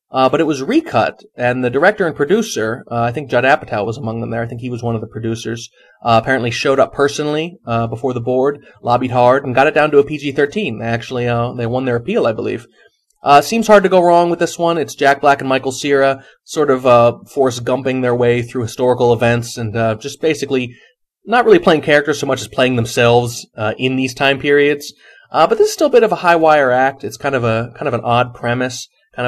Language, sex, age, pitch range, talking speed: English, male, 30-49, 120-155 Hz, 240 wpm